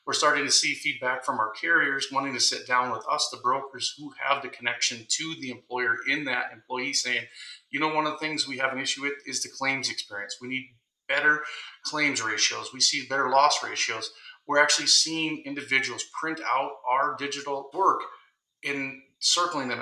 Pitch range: 125-150 Hz